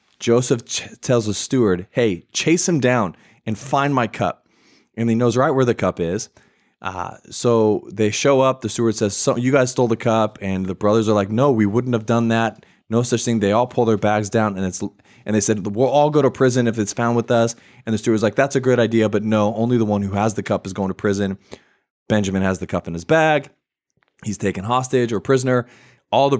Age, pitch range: 20-39, 95-120 Hz